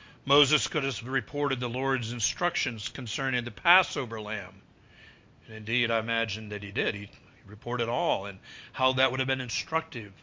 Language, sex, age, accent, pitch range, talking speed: English, male, 50-69, American, 115-150 Hz, 165 wpm